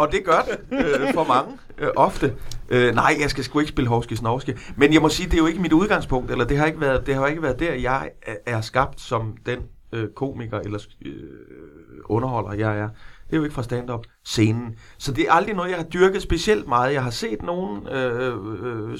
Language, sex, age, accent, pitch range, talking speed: Danish, male, 30-49, native, 115-140 Hz, 220 wpm